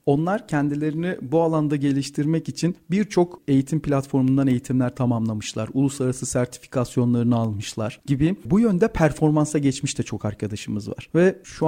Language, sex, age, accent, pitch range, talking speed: Turkish, male, 40-59, native, 125-155 Hz, 125 wpm